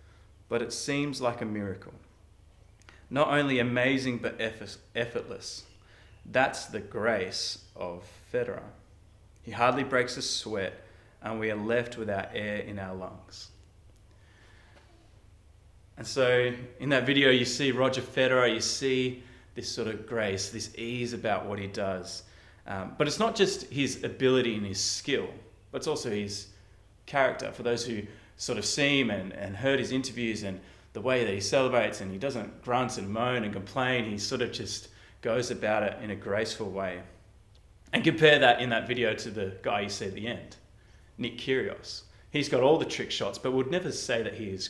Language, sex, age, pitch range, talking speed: English, male, 20-39, 100-125 Hz, 175 wpm